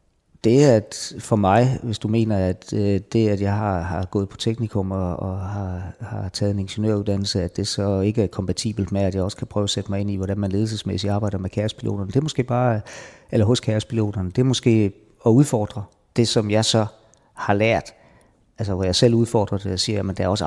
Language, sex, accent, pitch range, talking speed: Danish, male, native, 100-120 Hz, 225 wpm